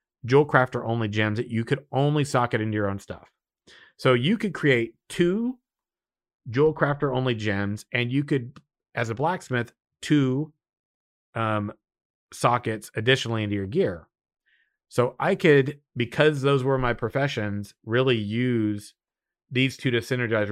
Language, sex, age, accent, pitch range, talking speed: English, male, 30-49, American, 105-130 Hz, 145 wpm